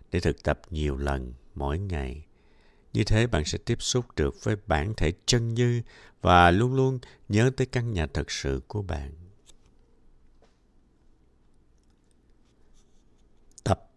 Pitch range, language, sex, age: 75-115 Hz, Vietnamese, male, 60-79